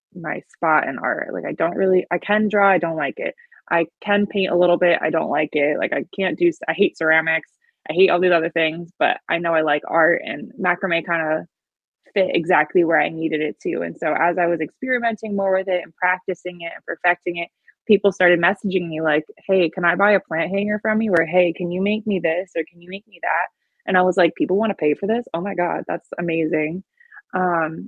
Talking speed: 245 wpm